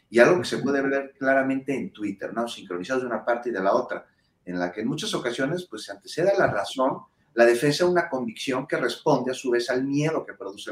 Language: Spanish